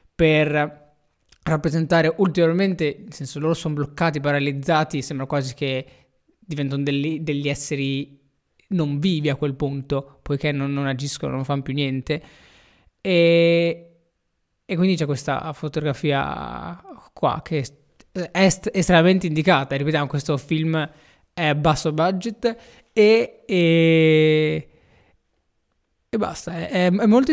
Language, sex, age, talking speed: Italian, male, 20-39, 120 wpm